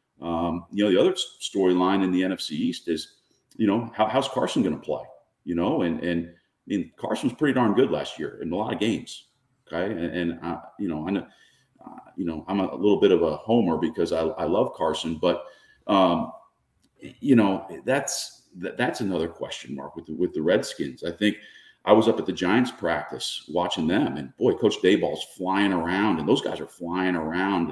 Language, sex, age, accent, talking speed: English, male, 40-59, American, 205 wpm